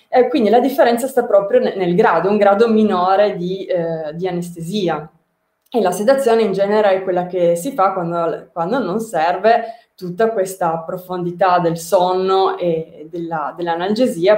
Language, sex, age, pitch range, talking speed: Italian, female, 20-39, 175-210 Hz, 155 wpm